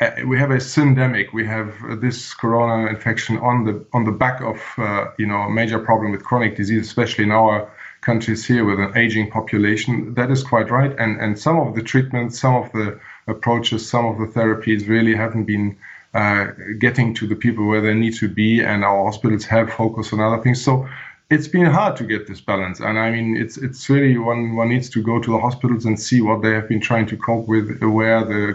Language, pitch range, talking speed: English, 105-120 Hz, 225 wpm